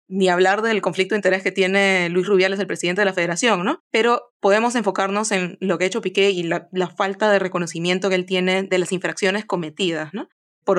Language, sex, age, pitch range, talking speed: English, female, 20-39, 180-205 Hz, 220 wpm